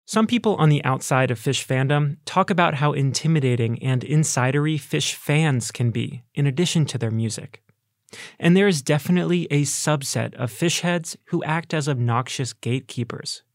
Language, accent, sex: English, American, male